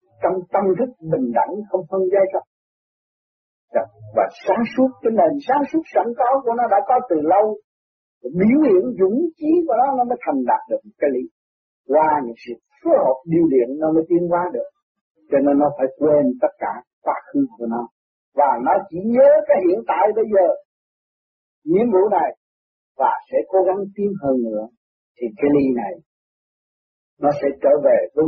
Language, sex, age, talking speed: Vietnamese, male, 50-69, 185 wpm